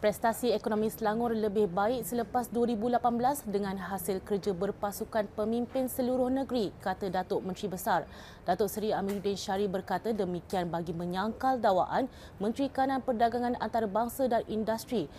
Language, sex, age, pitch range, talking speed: Malay, female, 20-39, 195-235 Hz, 130 wpm